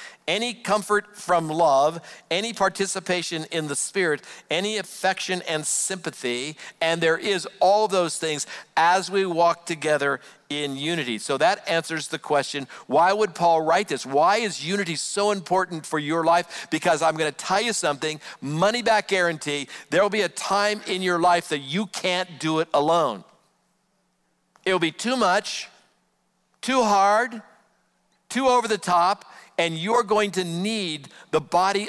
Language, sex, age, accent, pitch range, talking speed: English, male, 50-69, American, 150-195 Hz, 155 wpm